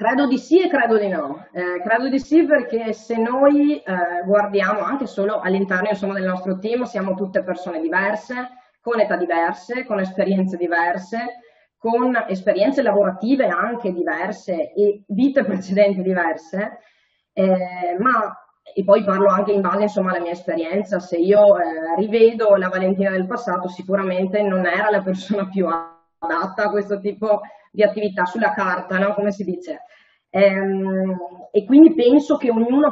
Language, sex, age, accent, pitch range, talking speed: Italian, female, 20-39, native, 185-230 Hz, 155 wpm